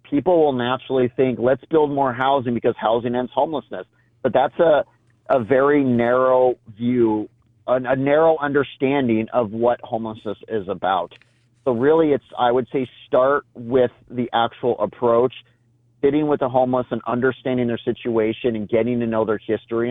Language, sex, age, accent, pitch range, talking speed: English, male, 40-59, American, 120-135 Hz, 160 wpm